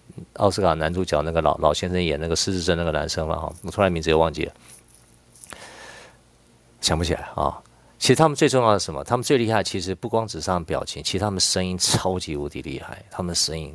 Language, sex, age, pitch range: Chinese, male, 50-69, 80-115 Hz